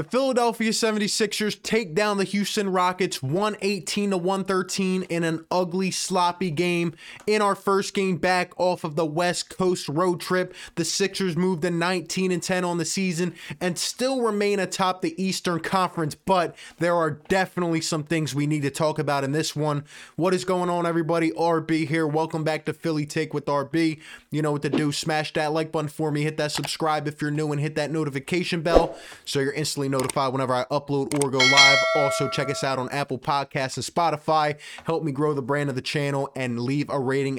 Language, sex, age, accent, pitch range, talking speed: English, male, 20-39, American, 150-190 Hz, 200 wpm